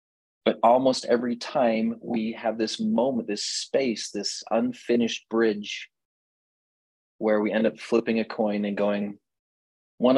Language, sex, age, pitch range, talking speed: English, male, 30-49, 105-160 Hz, 135 wpm